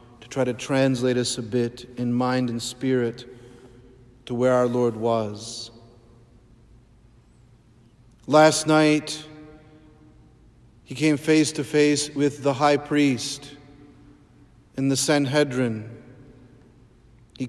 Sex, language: male, English